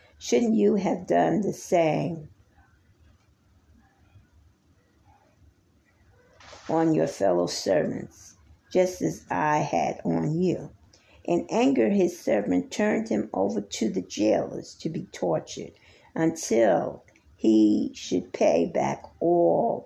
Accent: American